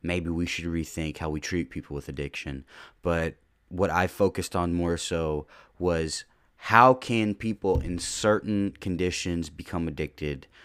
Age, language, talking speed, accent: 20-39, English, 145 wpm, American